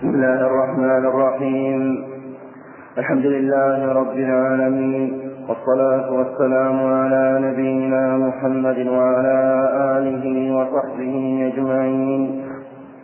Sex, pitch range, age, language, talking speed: male, 130-140 Hz, 40-59, Arabic, 80 wpm